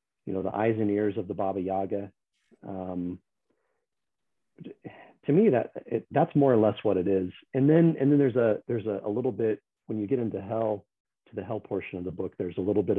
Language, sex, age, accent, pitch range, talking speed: English, male, 40-59, American, 100-125 Hz, 220 wpm